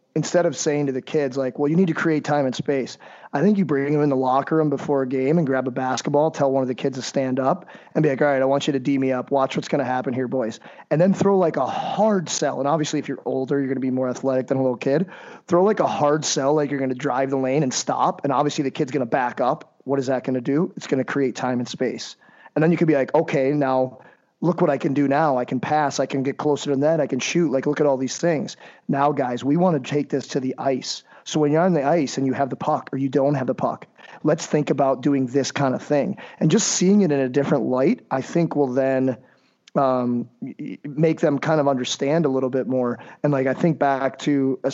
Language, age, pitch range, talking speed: English, 30-49, 130-150 Hz, 285 wpm